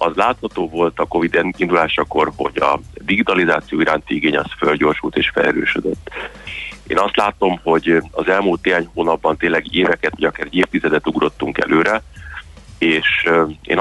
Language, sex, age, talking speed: Hungarian, male, 40-59, 145 wpm